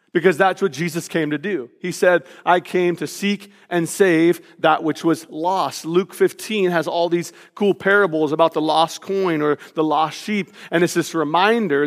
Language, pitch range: English, 165-195 Hz